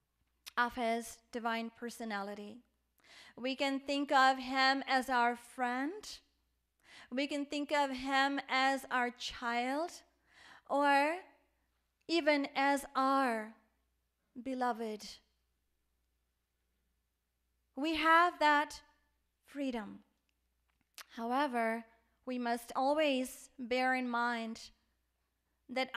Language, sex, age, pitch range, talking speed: English, female, 30-49, 225-275 Hz, 85 wpm